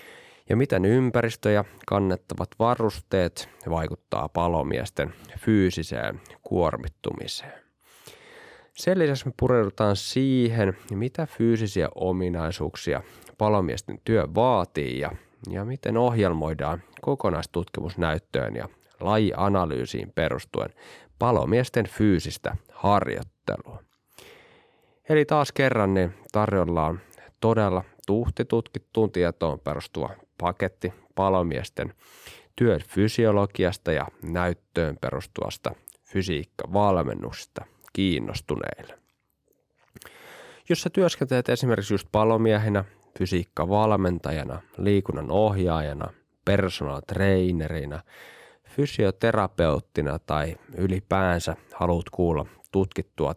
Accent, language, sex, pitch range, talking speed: native, Finnish, male, 85-110 Hz, 75 wpm